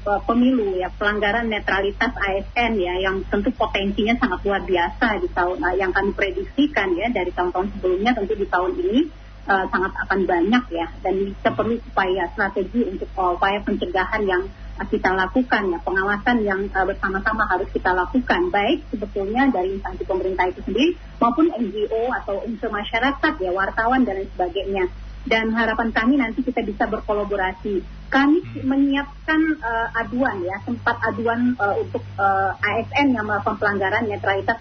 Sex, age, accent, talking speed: female, 30-49, native, 155 wpm